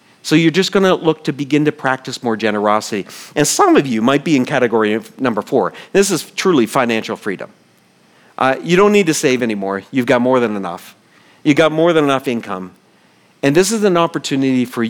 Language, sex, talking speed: English, male, 200 wpm